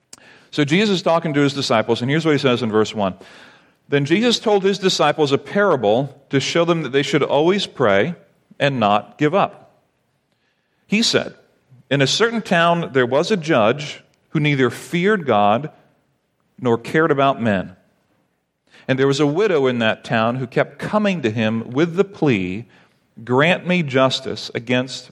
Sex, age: male, 40-59